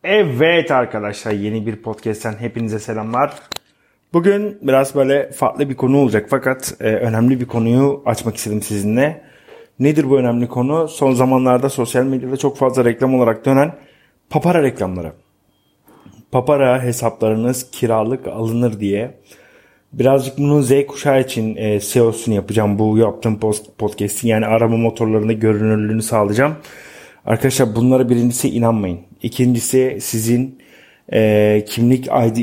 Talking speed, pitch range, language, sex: 125 wpm, 110-130 Hz, Turkish, male